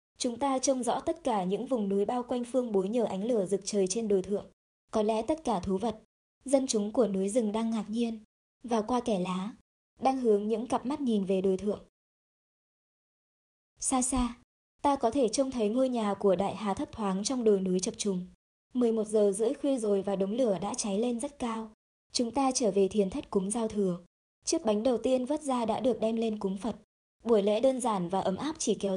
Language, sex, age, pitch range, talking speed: Vietnamese, male, 20-39, 200-250 Hz, 230 wpm